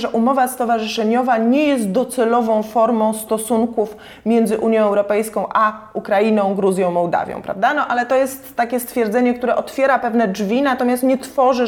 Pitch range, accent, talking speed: 215-265 Hz, native, 145 wpm